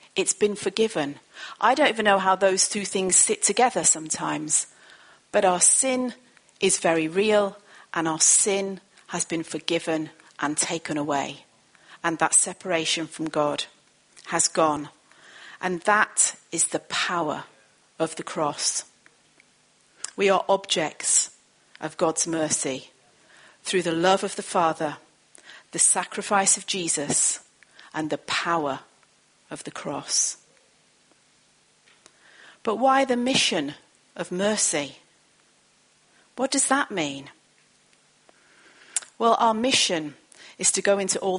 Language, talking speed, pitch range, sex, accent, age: English, 125 wpm, 155-200 Hz, female, British, 40-59